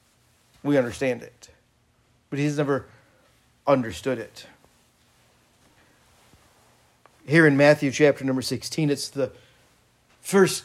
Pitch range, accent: 140-195 Hz, American